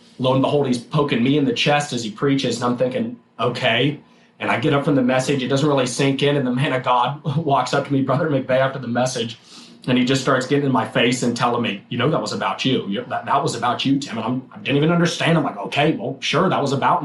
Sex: male